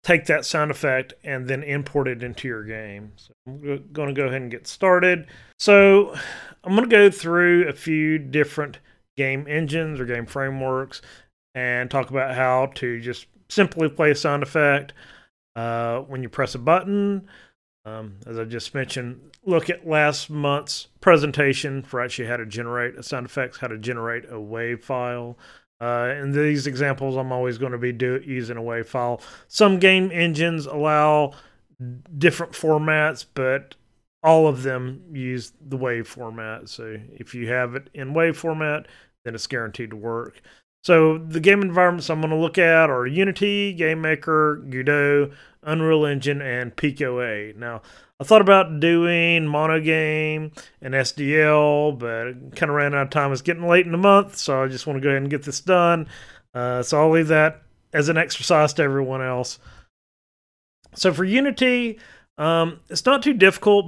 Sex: male